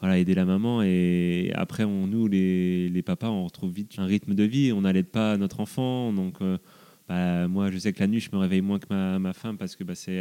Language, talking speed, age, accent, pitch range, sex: French, 260 wpm, 20-39, French, 95-105 Hz, male